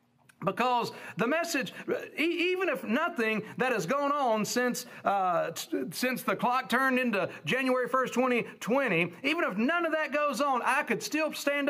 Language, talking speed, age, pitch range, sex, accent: English, 165 wpm, 50-69, 190-265 Hz, male, American